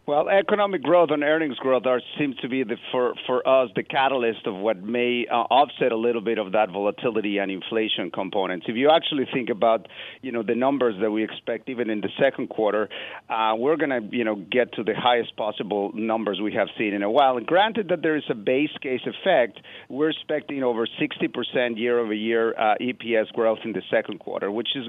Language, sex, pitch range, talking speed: English, male, 110-135 Hz, 210 wpm